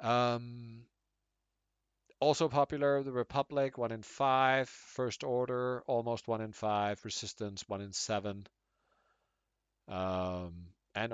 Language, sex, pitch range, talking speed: English, male, 100-125 Hz, 110 wpm